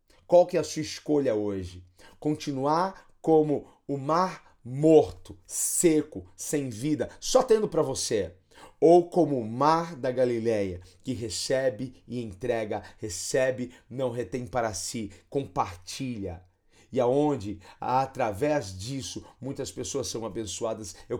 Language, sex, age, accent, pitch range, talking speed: Portuguese, male, 40-59, Brazilian, 105-145 Hz, 125 wpm